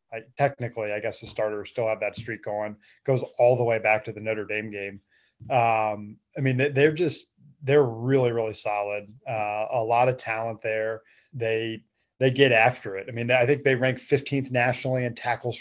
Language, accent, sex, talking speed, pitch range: English, American, male, 200 wpm, 110-130 Hz